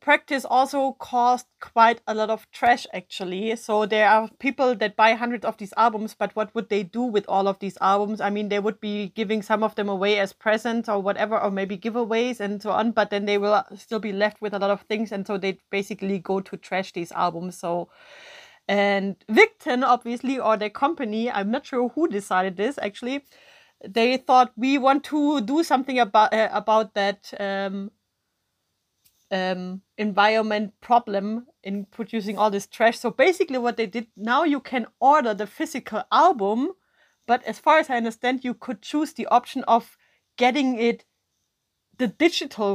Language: English